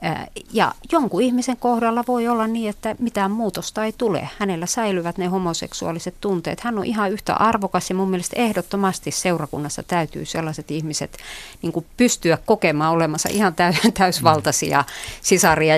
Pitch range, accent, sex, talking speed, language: 160-220 Hz, native, female, 140 wpm, Finnish